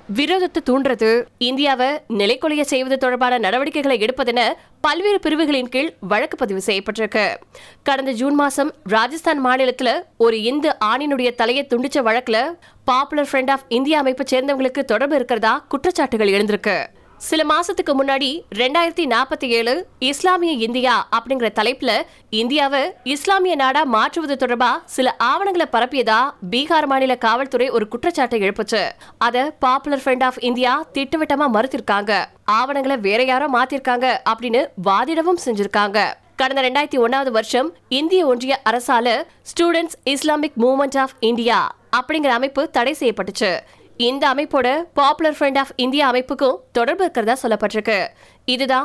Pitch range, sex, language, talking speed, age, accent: 240-290 Hz, female, Tamil, 70 wpm, 20-39, native